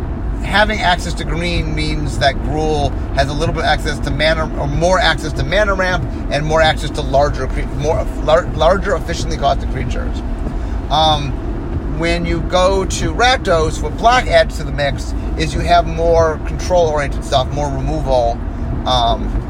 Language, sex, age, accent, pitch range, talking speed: English, male, 30-49, American, 95-155 Hz, 165 wpm